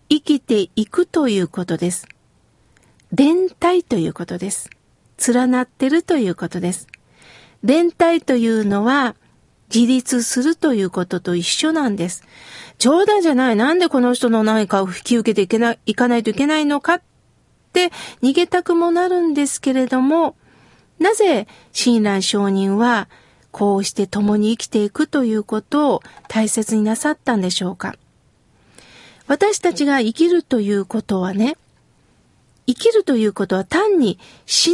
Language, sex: Japanese, female